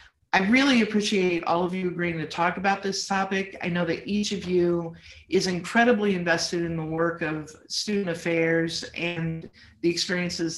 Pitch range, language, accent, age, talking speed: 160-195 Hz, English, American, 50-69, 170 wpm